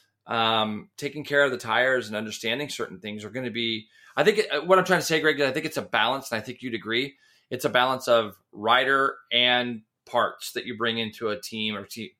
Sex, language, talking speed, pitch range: male, English, 235 wpm, 115-150 Hz